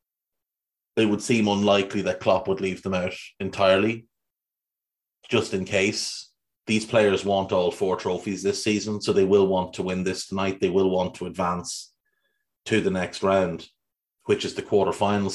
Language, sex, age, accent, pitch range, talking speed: English, male, 30-49, Irish, 95-115 Hz, 170 wpm